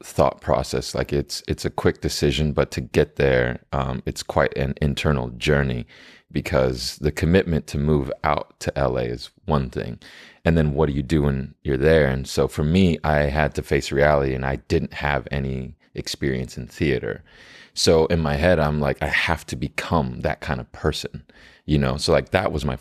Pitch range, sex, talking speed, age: 65-75 Hz, male, 200 wpm, 30-49